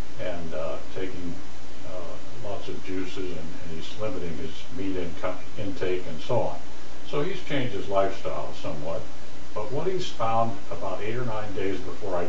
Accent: American